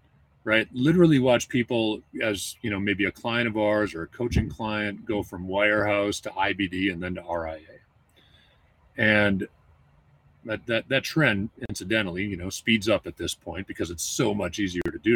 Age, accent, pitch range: 40-59, American, 95-120 Hz